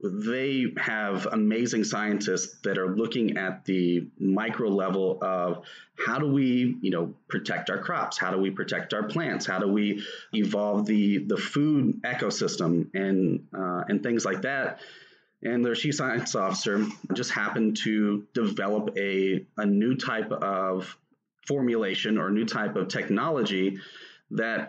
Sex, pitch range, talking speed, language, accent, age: male, 95-120 Hz, 150 wpm, English, American, 30-49